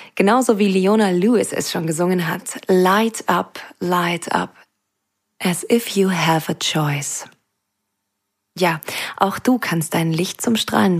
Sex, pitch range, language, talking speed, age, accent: female, 160-205 Hz, German, 140 wpm, 20-39, German